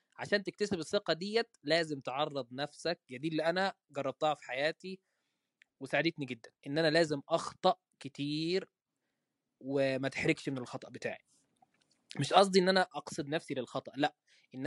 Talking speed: 145 wpm